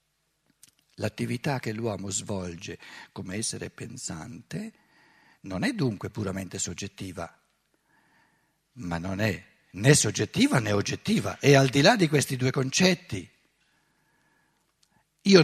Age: 60-79